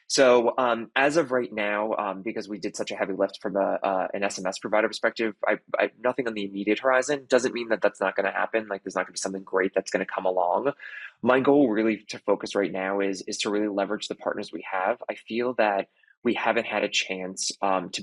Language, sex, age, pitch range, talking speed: English, male, 20-39, 100-115 Hz, 250 wpm